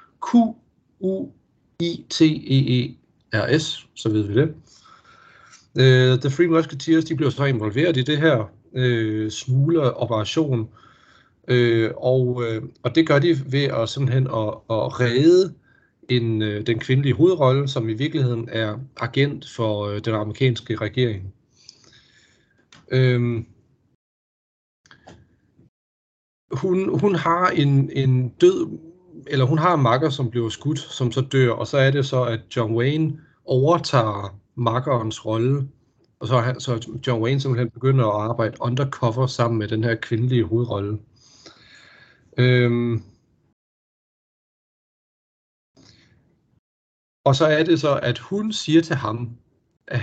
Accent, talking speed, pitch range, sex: native, 125 wpm, 115-140 Hz, male